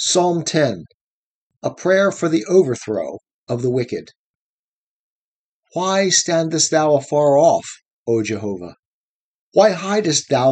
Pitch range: 140-185 Hz